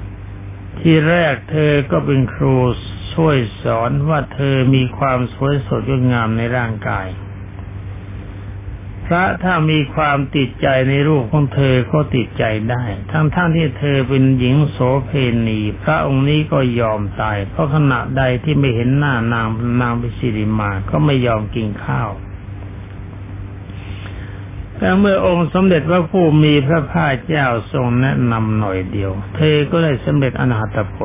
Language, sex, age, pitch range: Thai, male, 60-79, 100-145 Hz